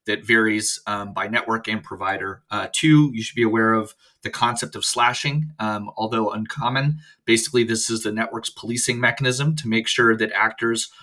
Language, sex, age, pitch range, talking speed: English, male, 30-49, 105-125 Hz, 180 wpm